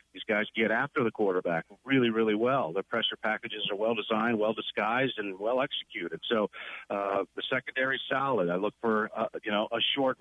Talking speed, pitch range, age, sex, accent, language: 195 wpm, 105-135 Hz, 50-69, male, American, English